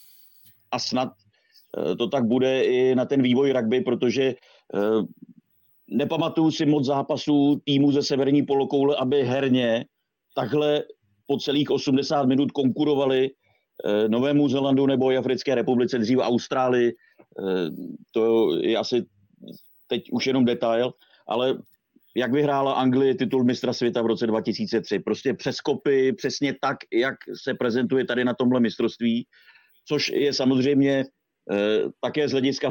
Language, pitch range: Czech, 120-145 Hz